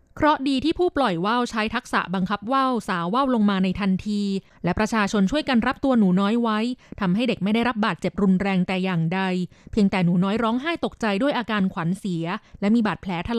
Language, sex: Thai, female